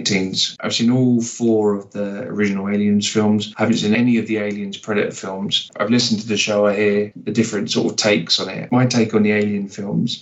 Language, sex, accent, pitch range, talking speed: English, male, British, 95-110 Hz, 225 wpm